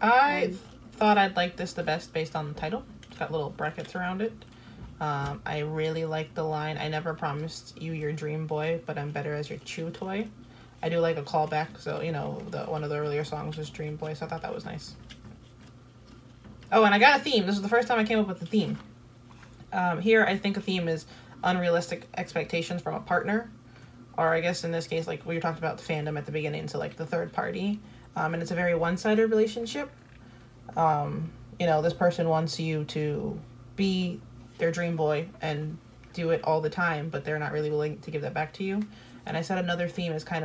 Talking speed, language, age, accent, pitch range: 225 wpm, English, 20-39, American, 150-175 Hz